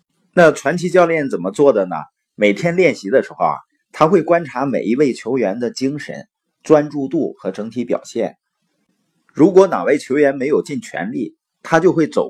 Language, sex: Chinese, male